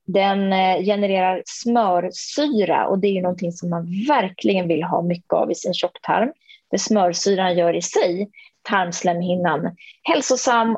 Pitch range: 175-230 Hz